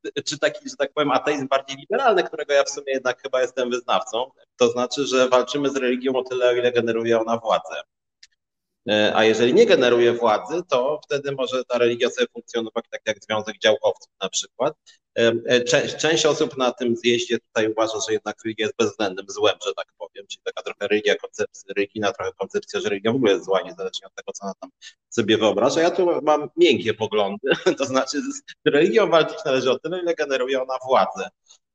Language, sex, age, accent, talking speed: Polish, male, 30-49, native, 195 wpm